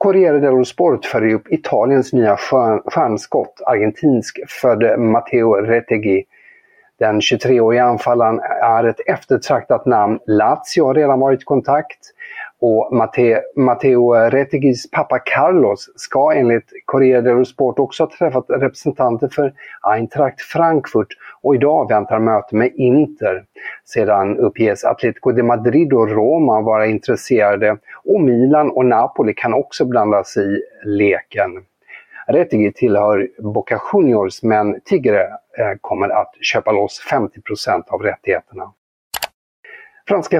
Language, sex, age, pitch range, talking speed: Swedish, male, 50-69, 110-160 Hz, 115 wpm